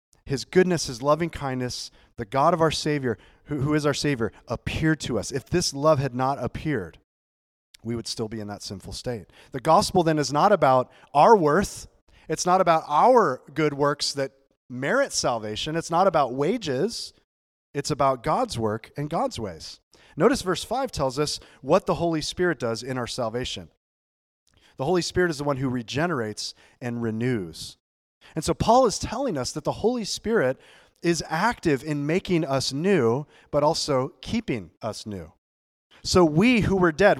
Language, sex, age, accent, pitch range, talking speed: English, male, 30-49, American, 115-165 Hz, 175 wpm